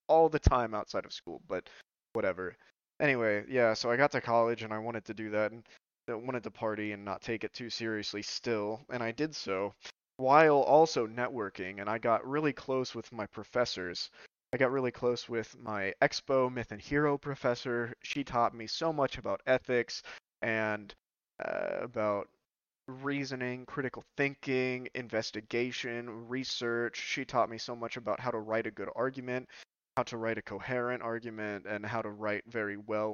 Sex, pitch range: male, 110-140 Hz